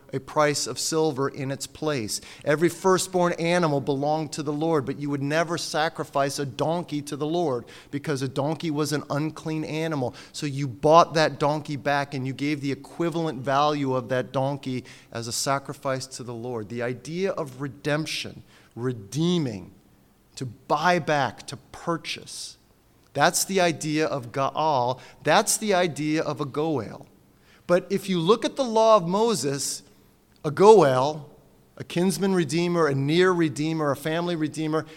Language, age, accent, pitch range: English, 30-49, American, 140-175 Hz